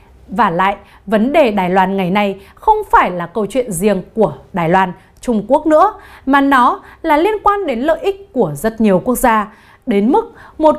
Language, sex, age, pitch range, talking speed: Vietnamese, female, 20-39, 200-285 Hz, 200 wpm